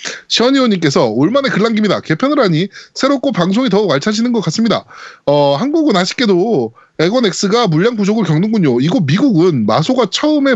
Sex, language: male, Korean